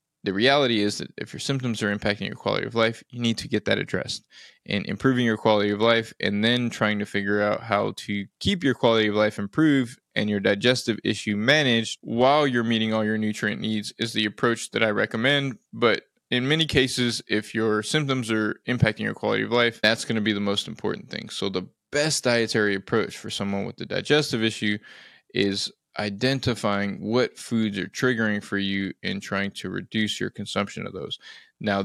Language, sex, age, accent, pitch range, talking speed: English, male, 20-39, American, 105-125 Hz, 200 wpm